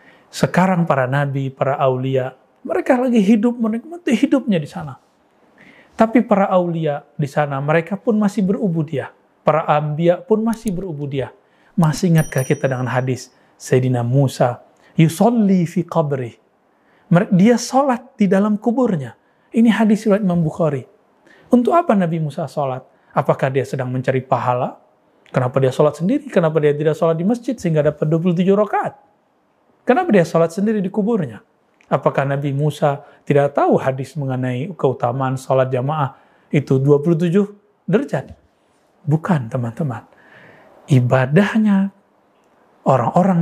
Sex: male